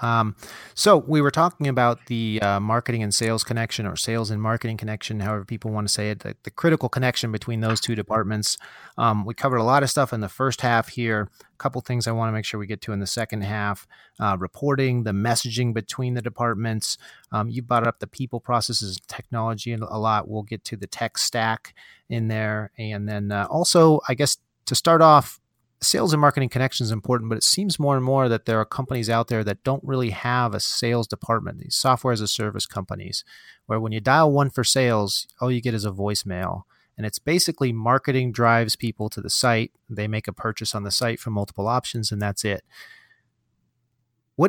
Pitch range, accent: 110-135 Hz, American